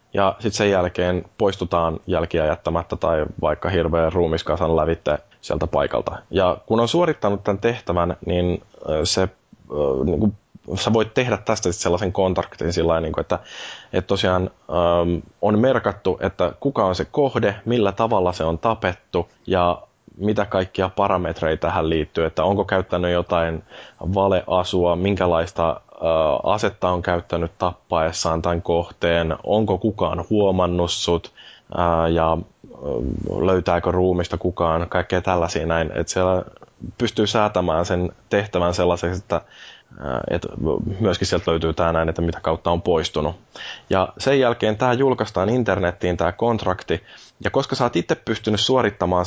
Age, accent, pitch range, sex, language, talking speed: 20-39, native, 85-100 Hz, male, Finnish, 135 wpm